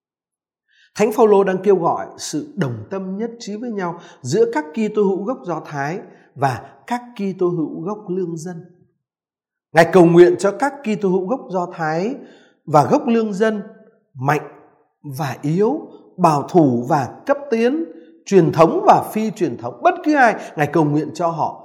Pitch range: 155-225 Hz